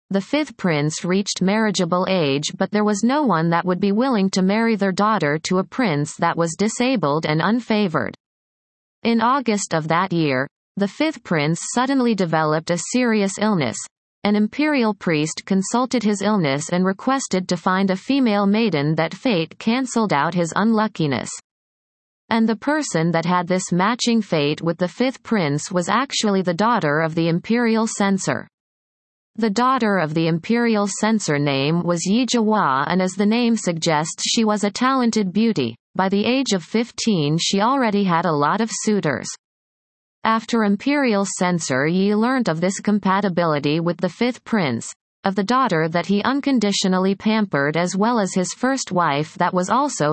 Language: English